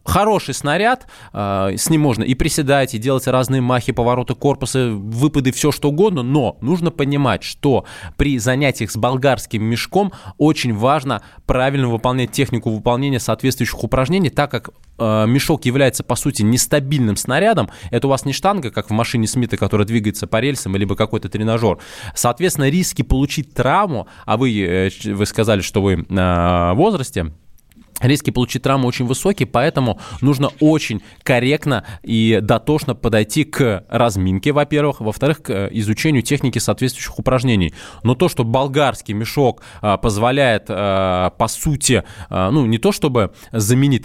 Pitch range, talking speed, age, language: 110-140 Hz, 145 wpm, 20-39, Russian